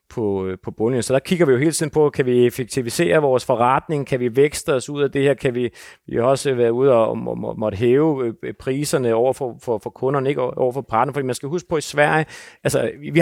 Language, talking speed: Danish, 250 wpm